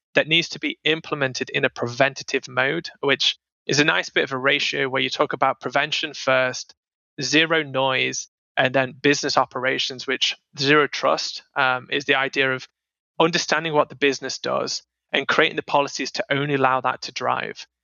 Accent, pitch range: British, 130-150 Hz